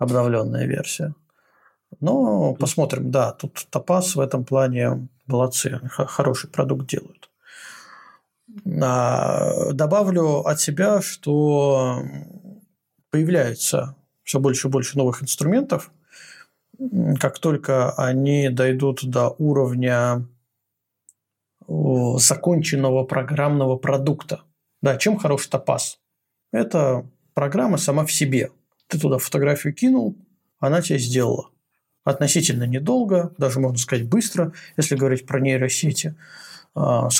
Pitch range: 130-170 Hz